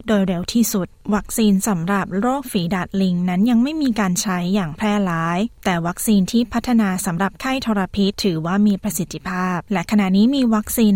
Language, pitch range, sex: Thai, 180-220 Hz, female